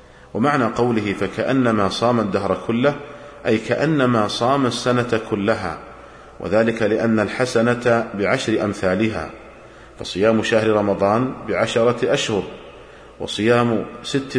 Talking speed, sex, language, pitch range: 95 wpm, male, Arabic, 110-125 Hz